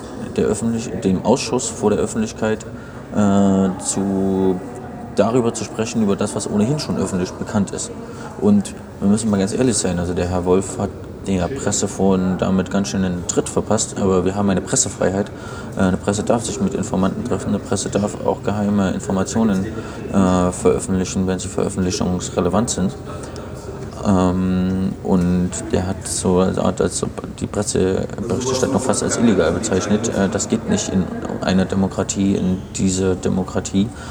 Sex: male